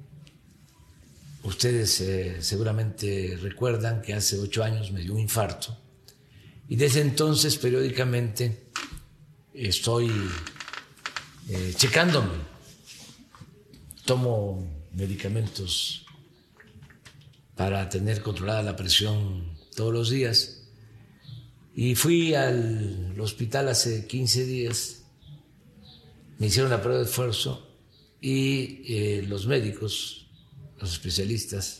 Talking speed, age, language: 90 wpm, 50-69, Spanish